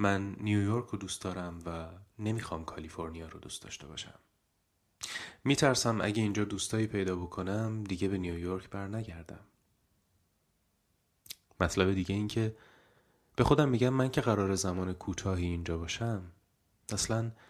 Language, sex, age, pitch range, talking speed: Persian, male, 30-49, 95-115 Hz, 125 wpm